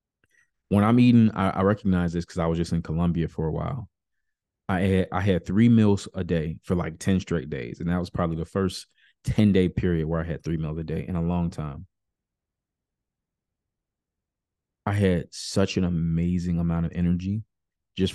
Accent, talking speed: American, 190 wpm